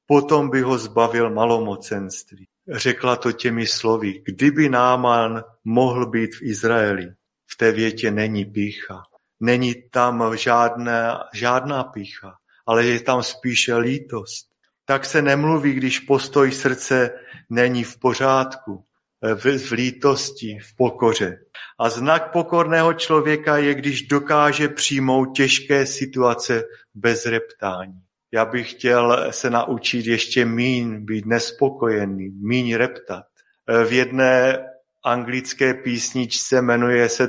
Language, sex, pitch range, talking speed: Slovak, male, 115-130 Hz, 115 wpm